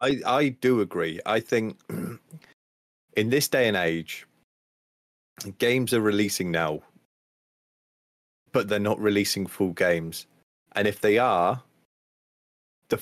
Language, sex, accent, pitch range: English, male, British, 90-115 Hz